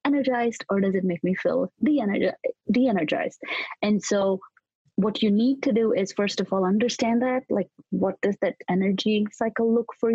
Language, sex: English, female